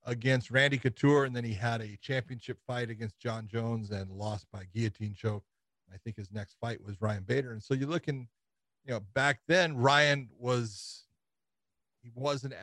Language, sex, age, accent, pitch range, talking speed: English, male, 40-59, American, 105-130 Hz, 180 wpm